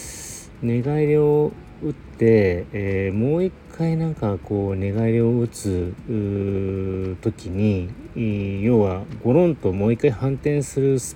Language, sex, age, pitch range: Japanese, male, 40-59, 90-130 Hz